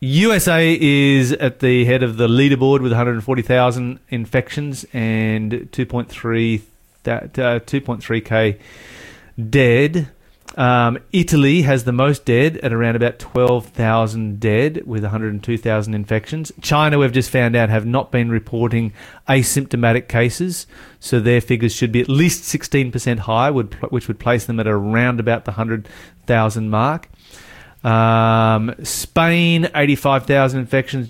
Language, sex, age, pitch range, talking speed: English, male, 30-49, 115-135 Hz, 120 wpm